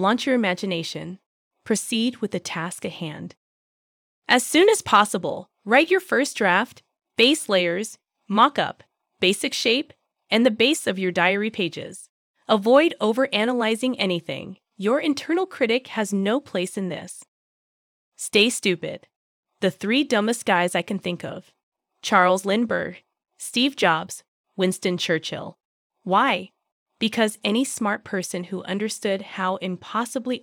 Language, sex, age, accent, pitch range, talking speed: English, female, 20-39, American, 190-260 Hz, 130 wpm